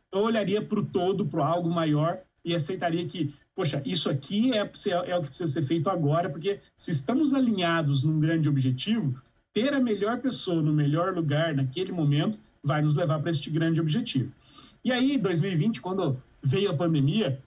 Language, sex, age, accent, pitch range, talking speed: Portuguese, male, 40-59, Brazilian, 155-215 Hz, 180 wpm